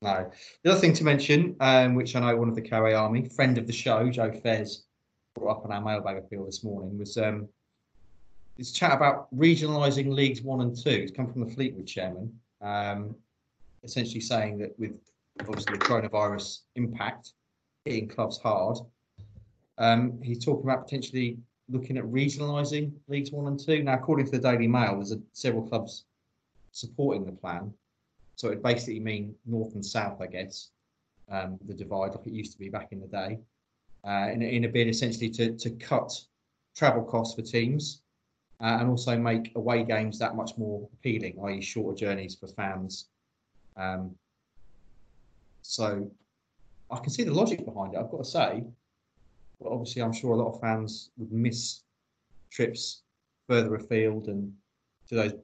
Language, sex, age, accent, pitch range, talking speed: English, male, 30-49, British, 105-125 Hz, 170 wpm